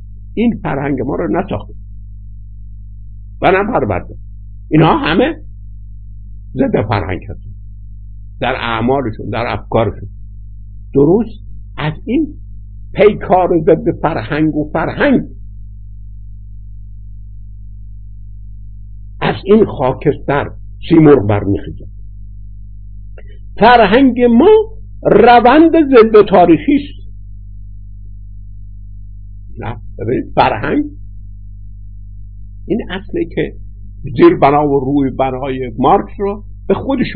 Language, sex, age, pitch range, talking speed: Persian, male, 60-79, 100-150 Hz, 80 wpm